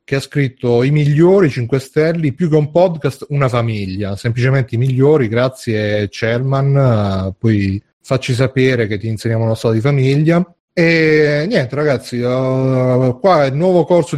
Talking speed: 150 wpm